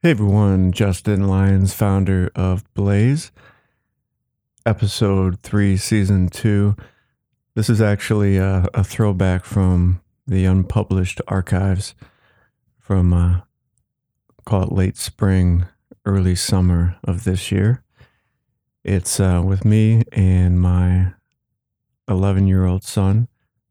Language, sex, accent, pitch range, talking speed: English, male, American, 95-110 Hz, 100 wpm